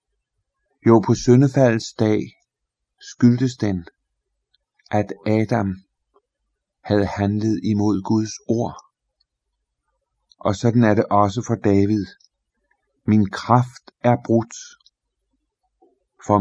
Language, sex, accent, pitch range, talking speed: Danish, male, native, 100-120 Hz, 90 wpm